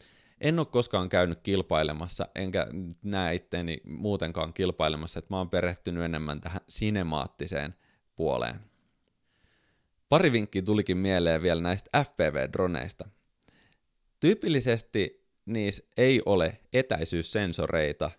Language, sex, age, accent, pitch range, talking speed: Finnish, male, 30-49, native, 85-110 Hz, 95 wpm